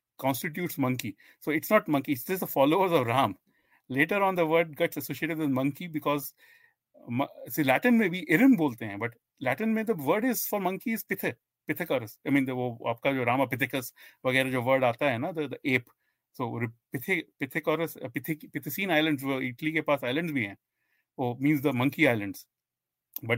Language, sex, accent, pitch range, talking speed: Hindi, male, native, 130-170 Hz, 195 wpm